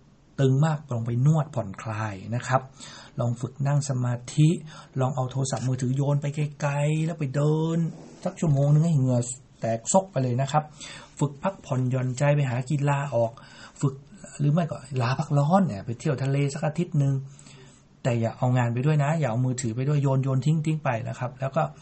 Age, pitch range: 60-79, 120-145 Hz